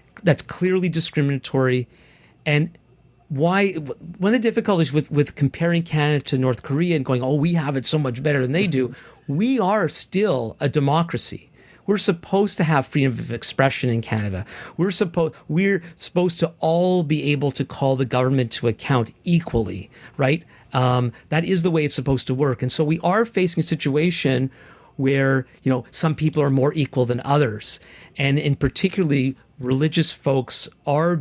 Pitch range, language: 130-160 Hz, English